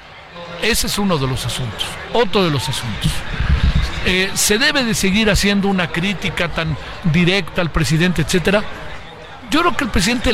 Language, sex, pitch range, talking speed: Spanish, male, 140-185 Hz, 165 wpm